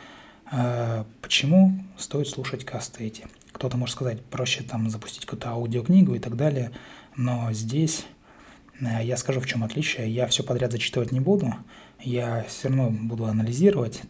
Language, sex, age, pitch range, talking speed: Russian, male, 20-39, 115-135 Hz, 145 wpm